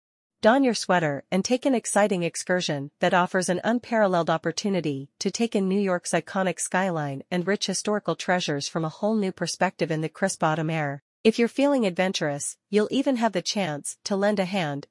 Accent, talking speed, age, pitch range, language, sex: American, 190 wpm, 40-59, 165-205 Hz, English, female